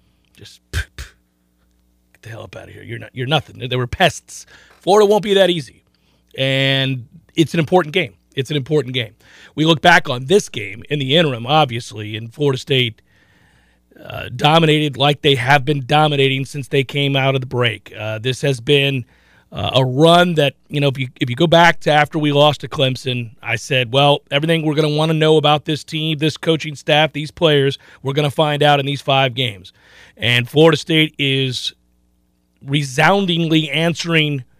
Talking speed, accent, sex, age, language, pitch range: 195 wpm, American, male, 40-59, English, 125-160 Hz